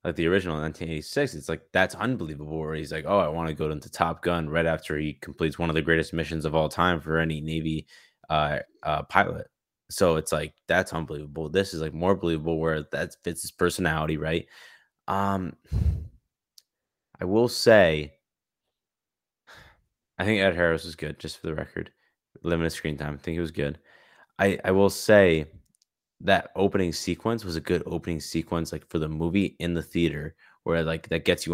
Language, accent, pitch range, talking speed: English, American, 80-90 Hz, 190 wpm